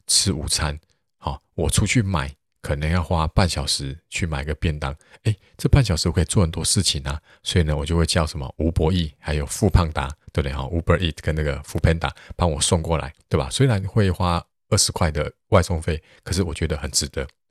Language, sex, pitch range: Chinese, male, 75-95 Hz